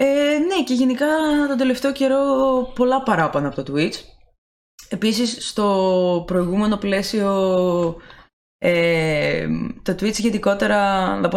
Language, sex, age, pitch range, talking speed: Greek, female, 20-39, 160-200 Hz, 115 wpm